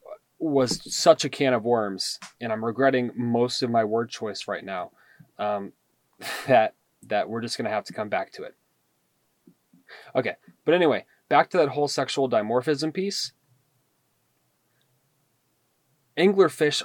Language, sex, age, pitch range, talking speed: English, male, 20-39, 110-145 Hz, 145 wpm